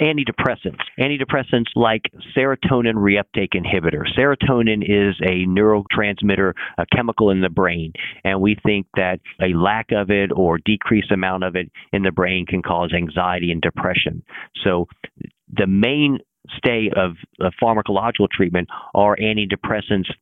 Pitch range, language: 95-115 Hz, English